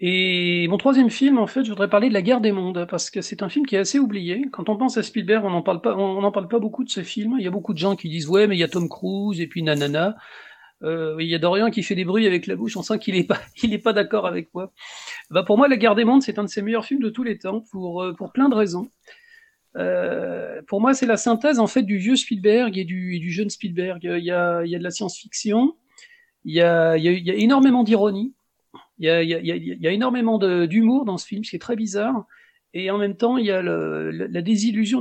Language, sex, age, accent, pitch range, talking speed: French, male, 40-59, French, 180-235 Hz, 290 wpm